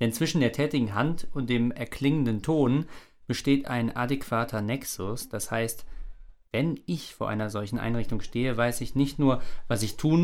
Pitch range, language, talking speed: 115-140 Hz, German, 170 wpm